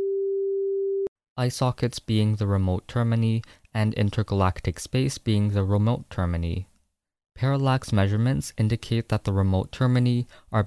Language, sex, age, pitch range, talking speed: English, male, 20-39, 100-125 Hz, 120 wpm